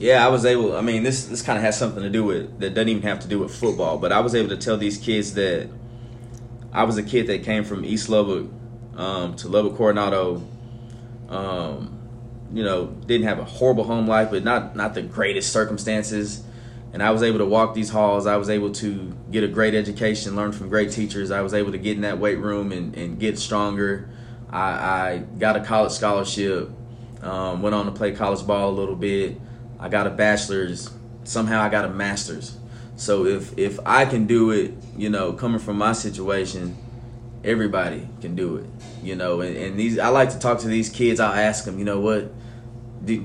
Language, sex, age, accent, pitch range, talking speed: English, male, 20-39, American, 100-120 Hz, 215 wpm